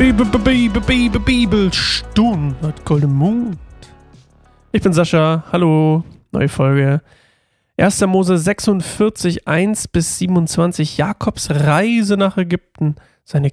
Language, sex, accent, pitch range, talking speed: German, male, German, 140-170 Hz, 100 wpm